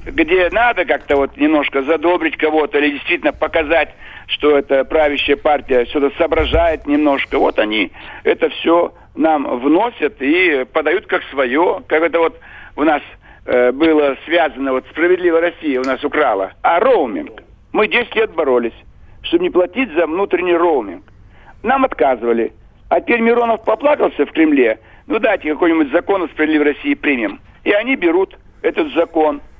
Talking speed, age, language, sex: 150 wpm, 60-79, Russian, male